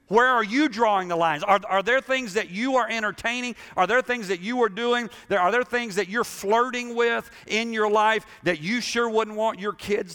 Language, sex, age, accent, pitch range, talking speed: English, male, 50-69, American, 130-215 Hz, 225 wpm